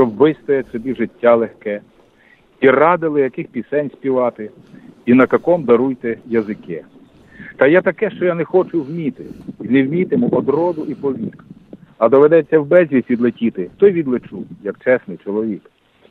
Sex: male